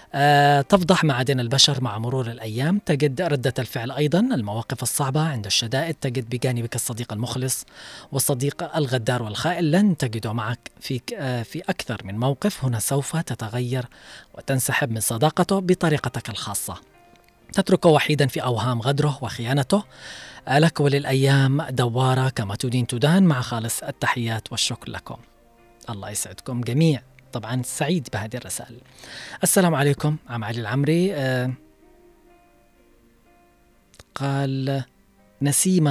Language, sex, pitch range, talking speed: Arabic, female, 120-145 Hz, 115 wpm